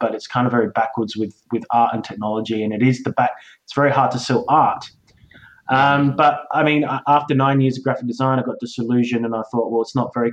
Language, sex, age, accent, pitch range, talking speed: English, male, 20-39, Australian, 110-130 Hz, 245 wpm